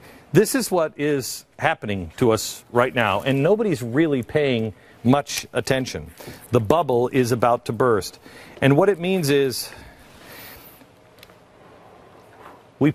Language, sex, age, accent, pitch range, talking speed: German, male, 50-69, American, 125-175 Hz, 125 wpm